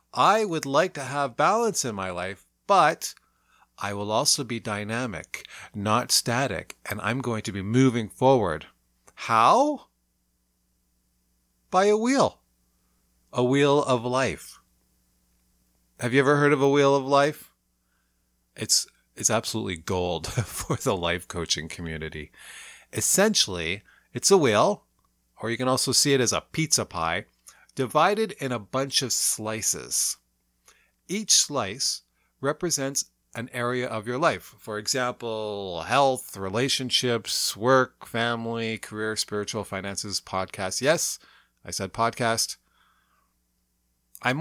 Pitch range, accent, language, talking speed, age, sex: 85-135 Hz, American, English, 125 wpm, 30-49, male